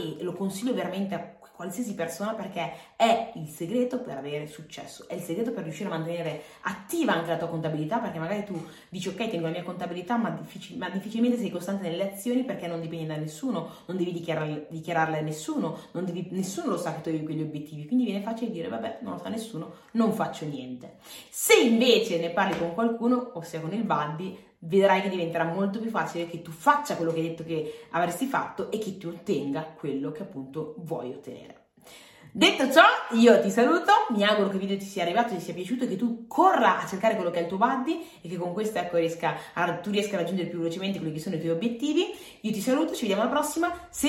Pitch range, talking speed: 165-230 Hz, 225 wpm